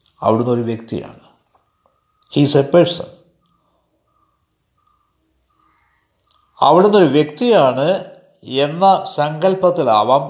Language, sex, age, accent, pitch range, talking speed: Malayalam, male, 60-79, native, 120-175 Hz, 65 wpm